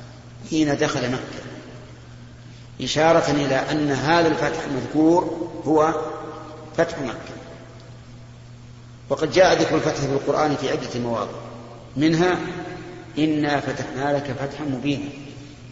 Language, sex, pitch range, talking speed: Arabic, male, 120-155 Hz, 105 wpm